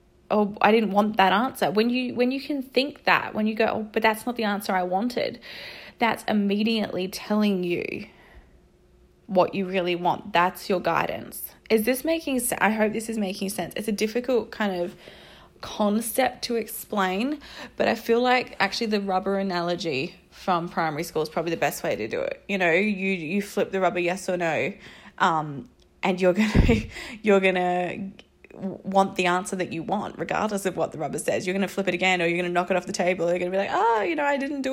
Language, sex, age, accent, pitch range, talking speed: English, female, 20-39, Australian, 180-220 Hz, 220 wpm